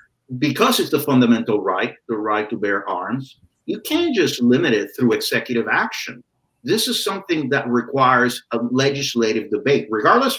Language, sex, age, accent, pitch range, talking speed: English, male, 50-69, American, 120-155 Hz, 155 wpm